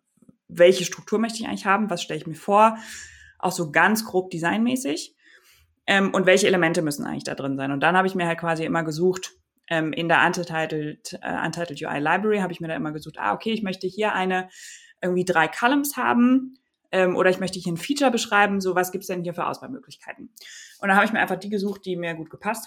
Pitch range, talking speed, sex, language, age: 160-205 Hz, 230 wpm, female, German, 20-39